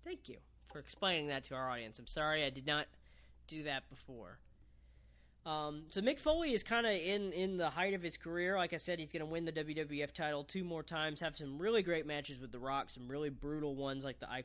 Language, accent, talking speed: English, American, 240 wpm